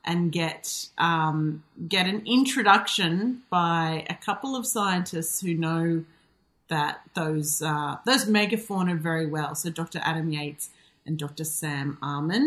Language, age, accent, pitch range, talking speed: English, 30-49, Australian, 160-210 Hz, 135 wpm